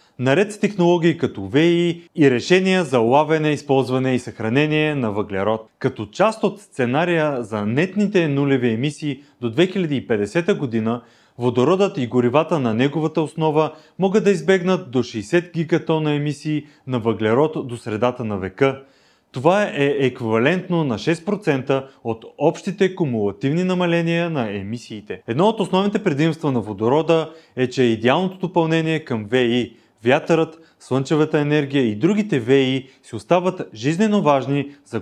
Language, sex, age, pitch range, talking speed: Bulgarian, male, 30-49, 125-175 Hz, 135 wpm